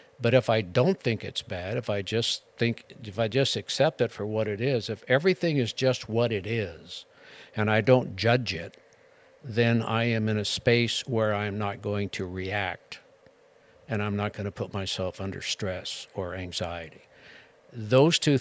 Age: 60-79